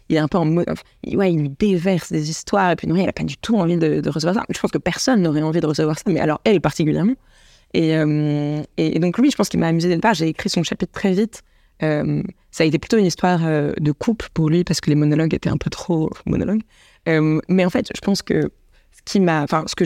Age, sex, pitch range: 20-39, female, 155-190 Hz